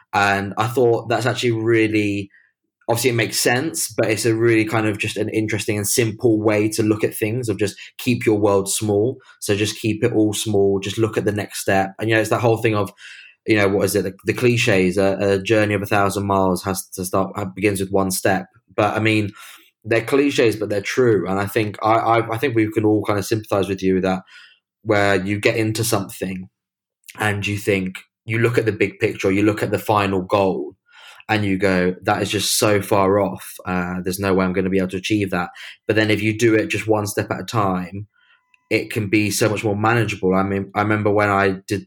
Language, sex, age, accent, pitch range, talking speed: English, male, 20-39, British, 95-110 Hz, 240 wpm